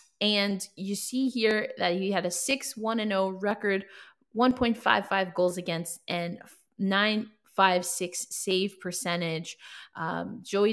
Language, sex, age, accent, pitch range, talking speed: English, female, 20-39, American, 175-210 Hz, 105 wpm